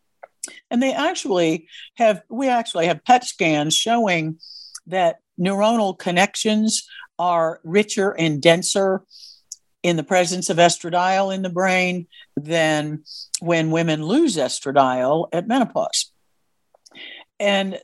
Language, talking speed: English, 110 wpm